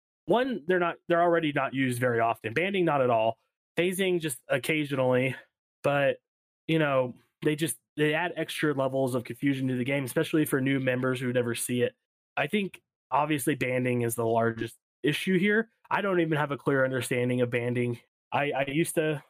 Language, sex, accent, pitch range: English, male, American, 125-160 Hz